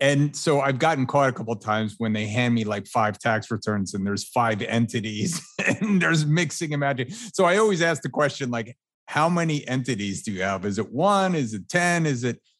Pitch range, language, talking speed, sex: 105-140 Hz, English, 225 wpm, male